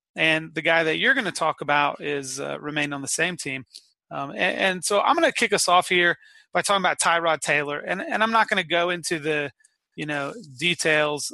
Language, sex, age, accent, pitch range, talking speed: English, male, 30-49, American, 145-180 Hz, 235 wpm